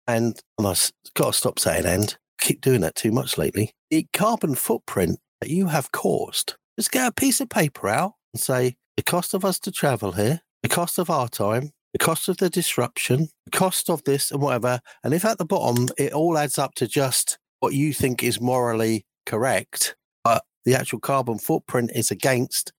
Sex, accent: male, British